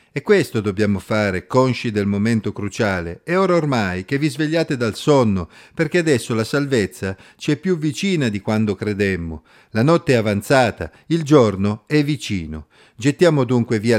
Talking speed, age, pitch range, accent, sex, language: 165 wpm, 50-69, 105-145 Hz, native, male, Italian